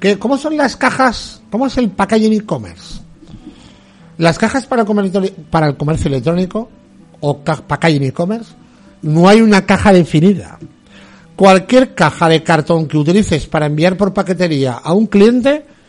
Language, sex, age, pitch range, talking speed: Spanish, male, 60-79, 145-205 Hz, 135 wpm